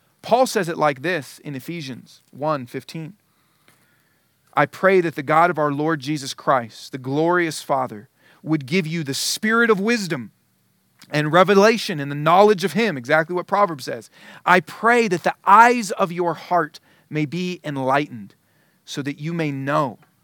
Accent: American